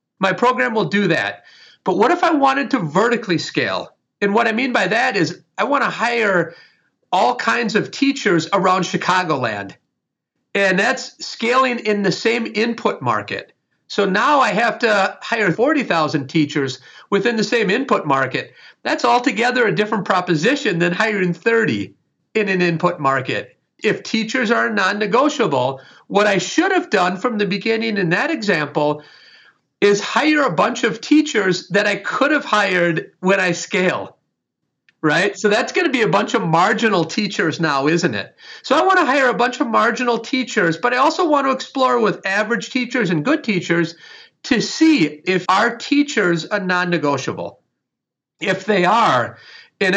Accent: American